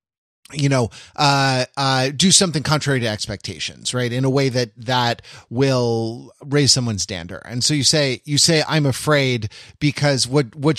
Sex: male